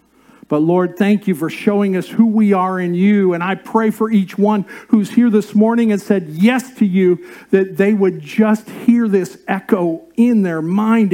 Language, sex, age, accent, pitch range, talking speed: English, male, 50-69, American, 150-225 Hz, 200 wpm